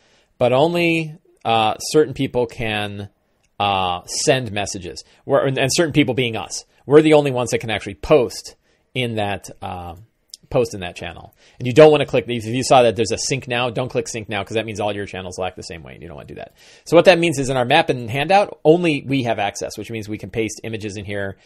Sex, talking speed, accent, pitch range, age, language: male, 245 wpm, American, 100-135 Hz, 30-49, English